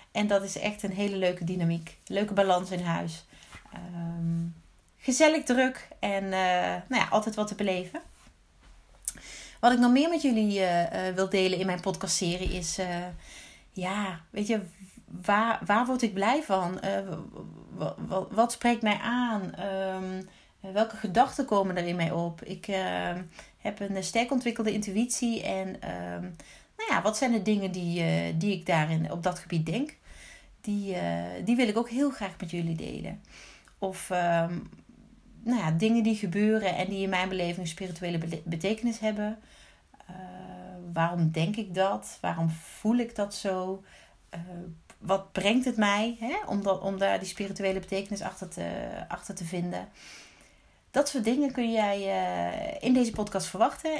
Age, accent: 30-49, Dutch